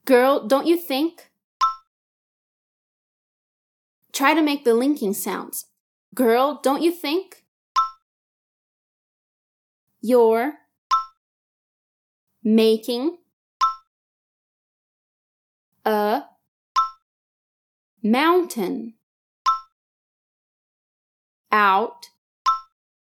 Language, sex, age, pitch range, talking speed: Portuguese, female, 20-39, 230-315 Hz, 50 wpm